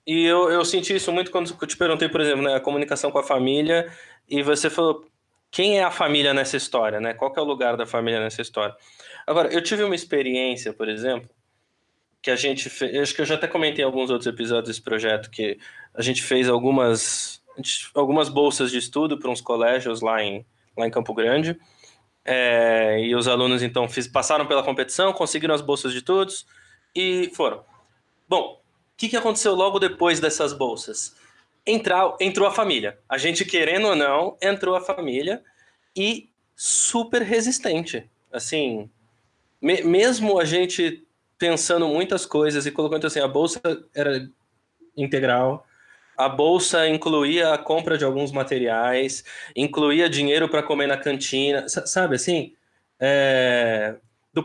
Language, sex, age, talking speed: Portuguese, male, 20-39, 160 wpm